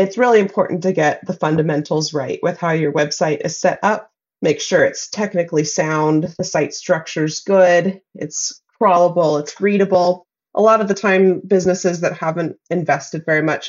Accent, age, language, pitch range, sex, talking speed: American, 30-49, English, 155-195 Hz, female, 170 wpm